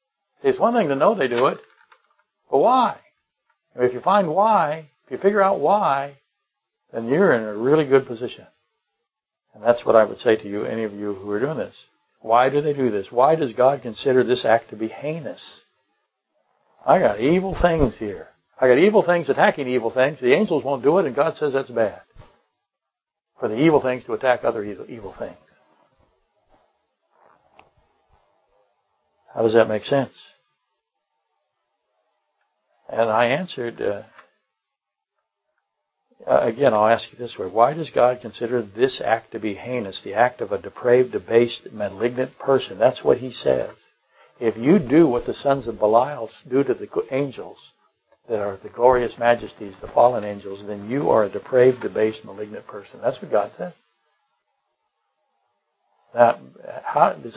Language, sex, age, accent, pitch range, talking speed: English, male, 60-79, American, 115-150 Hz, 165 wpm